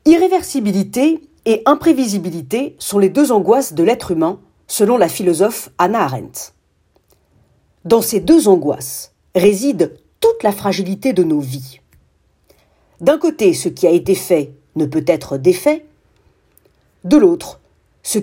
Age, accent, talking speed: 40-59, French, 135 wpm